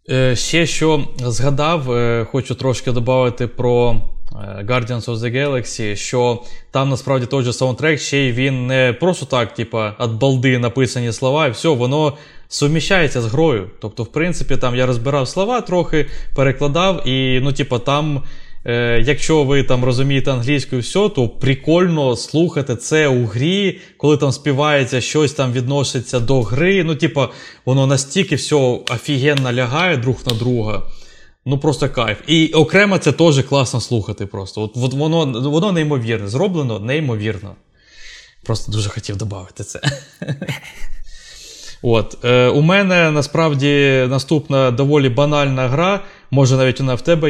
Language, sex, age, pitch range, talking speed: Ukrainian, male, 20-39, 120-150 Hz, 140 wpm